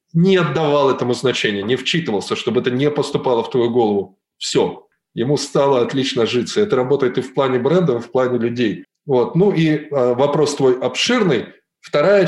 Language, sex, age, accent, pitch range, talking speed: Russian, male, 20-39, native, 125-155 Hz, 170 wpm